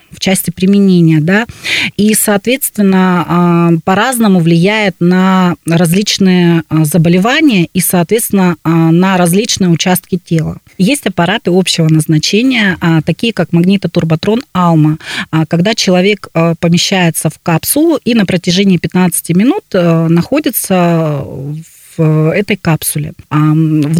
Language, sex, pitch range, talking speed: Russian, female, 165-200 Hz, 100 wpm